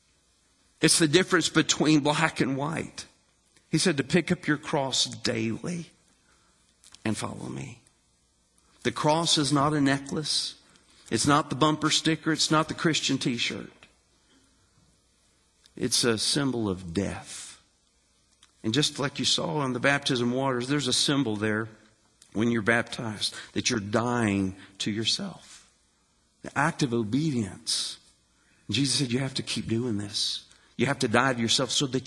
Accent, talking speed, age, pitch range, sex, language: American, 150 wpm, 50-69, 115-160 Hz, male, English